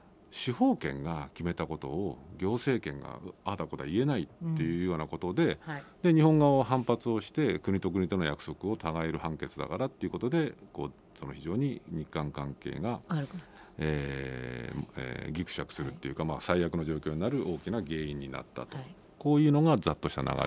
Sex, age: male, 50-69